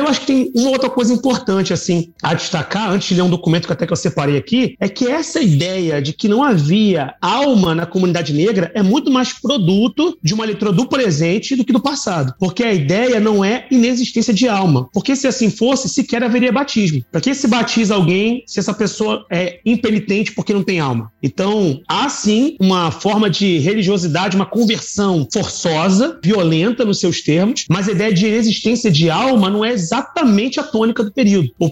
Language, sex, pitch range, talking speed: Portuguese, male, 175-235 Hz, 200 wpm